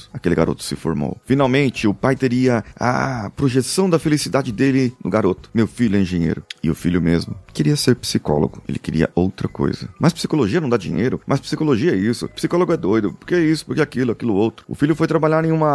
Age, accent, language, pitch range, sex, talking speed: 30-49, Brazilian, Portuguese, 90-130 Hz, male, 210 wpm